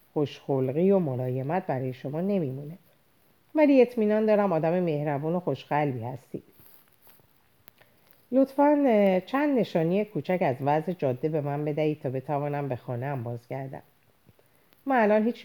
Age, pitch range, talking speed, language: 40-59, 130-185 Hz, 130 wpm, Persian